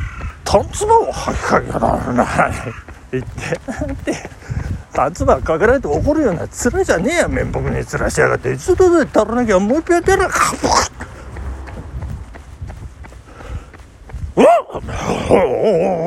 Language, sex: Japanese, male